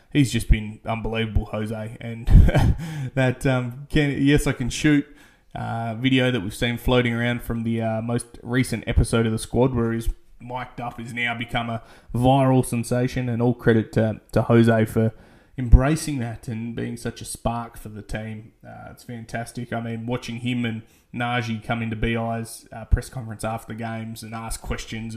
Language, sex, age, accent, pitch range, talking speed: English, male, 20-39, Australian, 115-130 Hz, 180 wpm